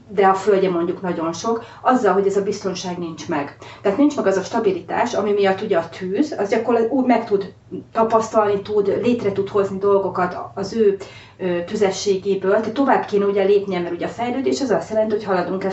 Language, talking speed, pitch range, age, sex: Hungarian, 195 wpm, 180-220 Hz, 30-49, female